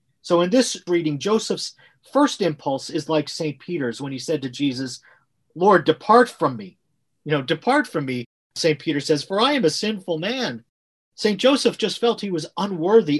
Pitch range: 145-195 Hz